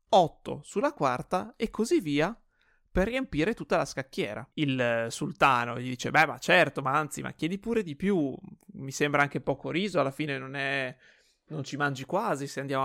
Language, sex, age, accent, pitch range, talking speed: Italian, male, 30-49, native, 135-180 Hz, 190 wpm